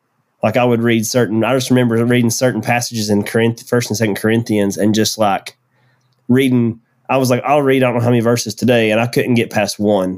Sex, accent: male, American